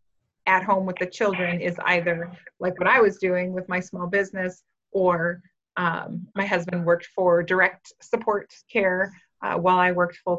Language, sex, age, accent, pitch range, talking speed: English, female, 30-49, American, 175-205 Hz, 175 wpm